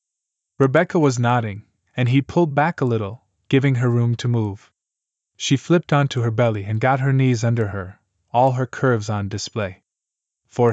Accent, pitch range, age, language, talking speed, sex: American, 110-135 Hz, 20-39, English, 175 wpm, male